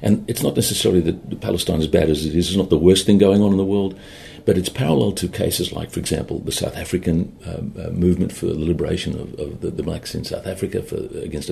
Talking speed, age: 240 wpm, 50-69